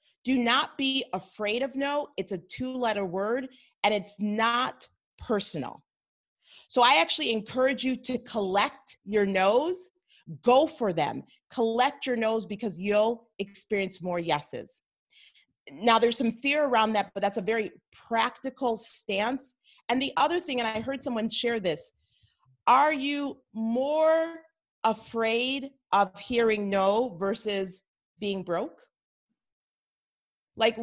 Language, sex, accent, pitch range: English, female, American, 210-270 Hz